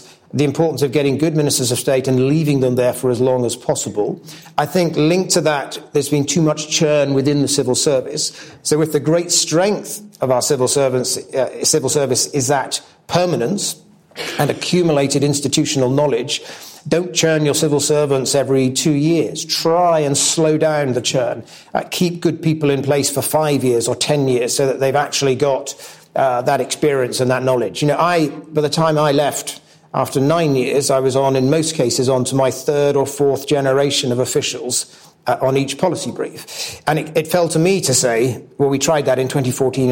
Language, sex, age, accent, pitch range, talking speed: English, male, 40-59, British, 130-155 Hz, 200 wpm